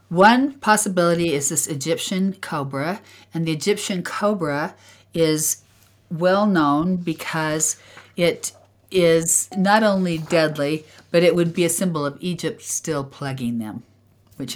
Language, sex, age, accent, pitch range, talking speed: English, female, 50-69, American, 140-170 Hz, 130 wpm